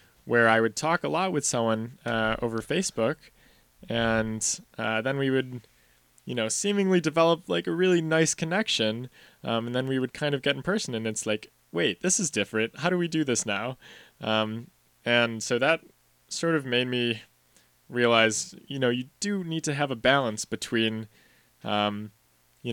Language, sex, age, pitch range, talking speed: English, male, 20-39, 110-135 Hz, 180 wpm